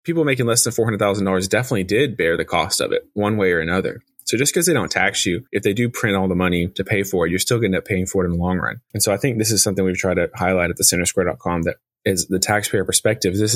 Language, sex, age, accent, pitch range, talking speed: English, male, 20-39, American, 90-105 Hz, 295 wpm